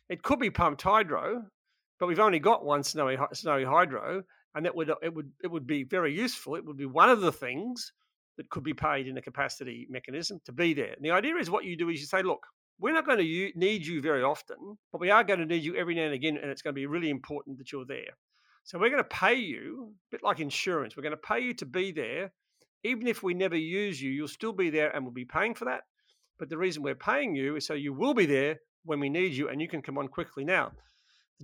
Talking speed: 265 wpm